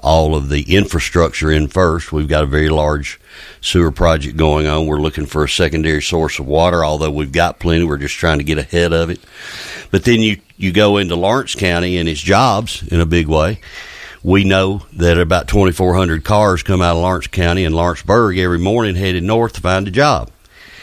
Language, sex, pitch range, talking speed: English, male, 80-90 Hz, 205 wpm